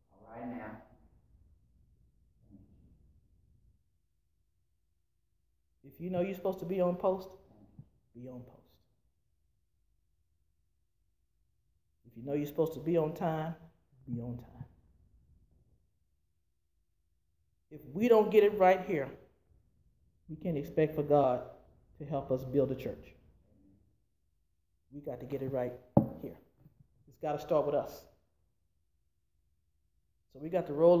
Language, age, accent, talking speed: English, 40-59, American, 115 wpm